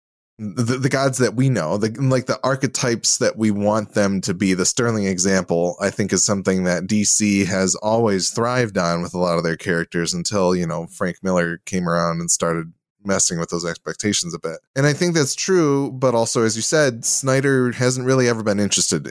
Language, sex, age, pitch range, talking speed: English, male, 20-39, 90-120 Hz, 205 wpm